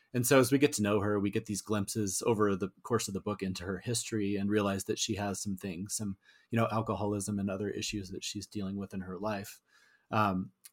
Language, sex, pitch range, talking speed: English, male, 95-115 Hz, 240 wpm